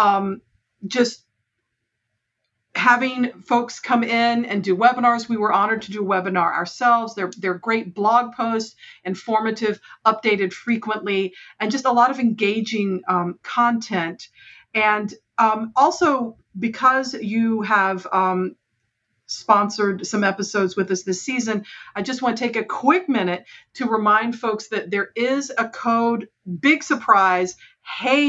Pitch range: 195-240 Hz